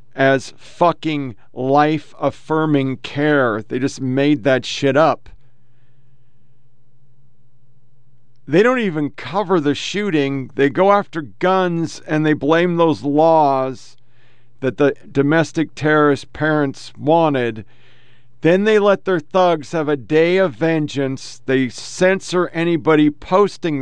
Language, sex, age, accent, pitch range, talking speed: English, male, 50-69, American, 135-175 Hz, 115 wpm